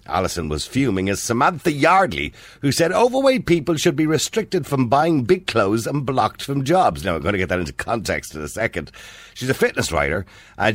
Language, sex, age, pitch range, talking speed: English, male, 50-69, 100-140 Hz, 205 wpm